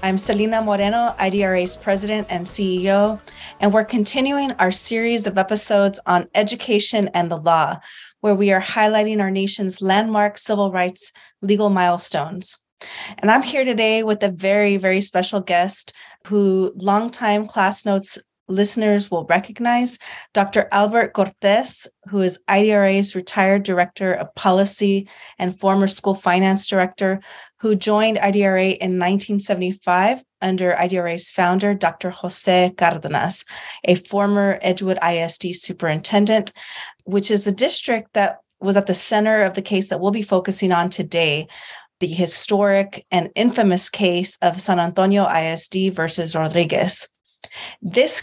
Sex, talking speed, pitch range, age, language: female, 135 wpm, 185-210 Hz, 30-49, English